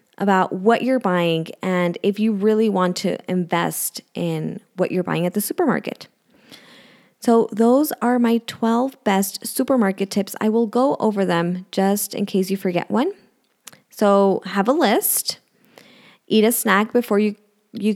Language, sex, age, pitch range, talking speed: English, female, 20-39, 200-245 Hz, 155 wpm